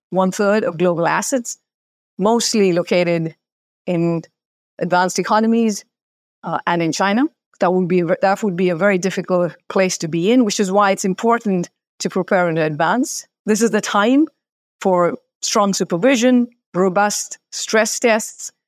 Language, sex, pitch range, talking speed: English, female, 175-225 Hz, 145 wpm